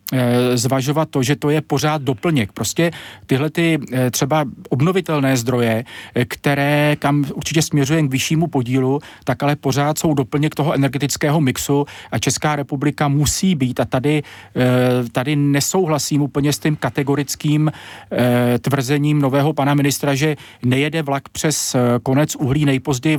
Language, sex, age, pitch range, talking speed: Czech, male, 40-59, 130-155 Hz, 135 wpm